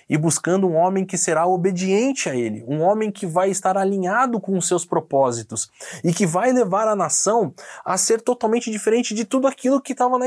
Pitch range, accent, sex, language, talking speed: 165-225 Hz, Brazilian, male, Portuguese, 205 wpm